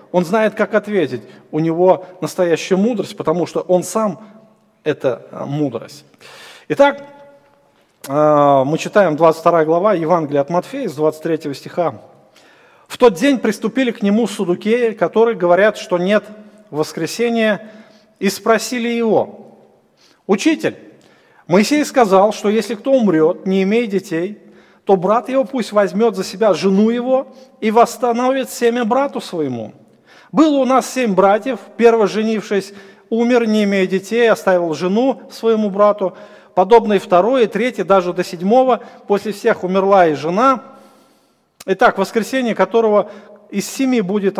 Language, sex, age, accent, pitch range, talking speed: Russian, male, 40-59, native, 185-235 Hz, 130 wpm